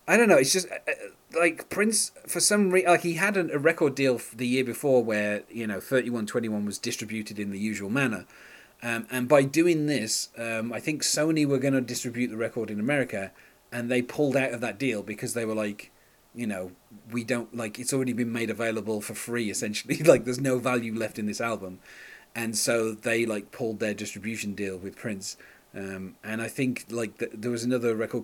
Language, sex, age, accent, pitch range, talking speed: English, male, 30-49, British, 110-135 Hz, 210 wpm